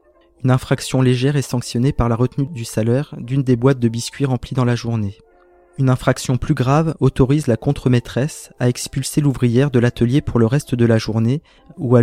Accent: French